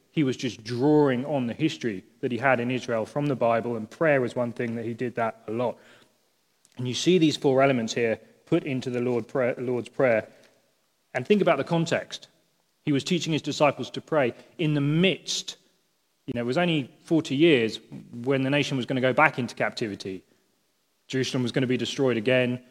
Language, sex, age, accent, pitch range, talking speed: English, male, 30-49, British, 115-145 Hz, 205 wpm